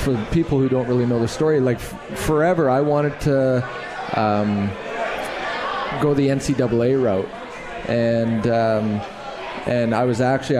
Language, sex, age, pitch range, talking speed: English, male, 20-39, 115-135 Hz, 140 wpm